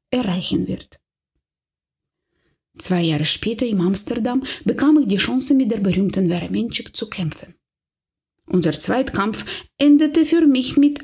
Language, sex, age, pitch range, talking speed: German, female, 20-39, 180-255 Hz, 130 wpm